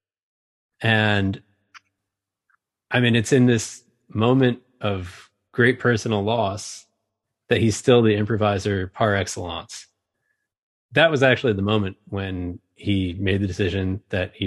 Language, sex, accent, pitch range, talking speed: English, male, American, 95-115 Hz, 125 wpm